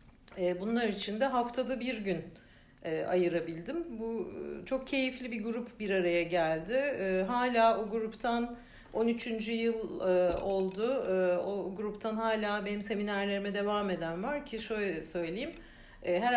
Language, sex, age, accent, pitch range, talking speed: Turkish, female, 60-79, native, 185-235 Hz, 120 wpm